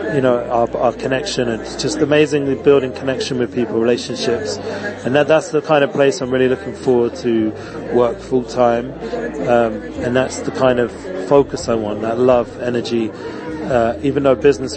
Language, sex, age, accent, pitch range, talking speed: English, male, 30-49, British, 115-135 Hz, 180 wpm